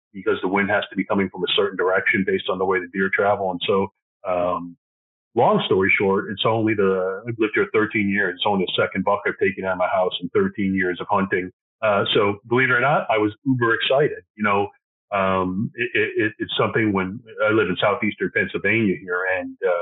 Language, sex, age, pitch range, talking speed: English, male, 40-59, 95-115 Hz, 220 wpm